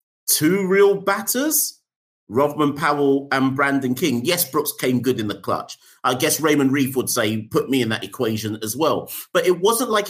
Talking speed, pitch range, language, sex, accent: 190 wpm, 130-195 Hz, English, male, British